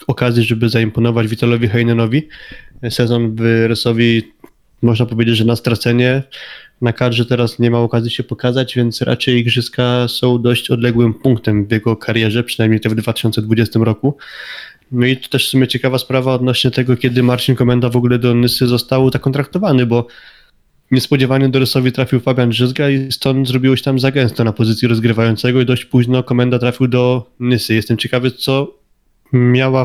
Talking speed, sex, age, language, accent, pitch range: 170 wpm, male, 20-39, Polish, native, 120-130 Hz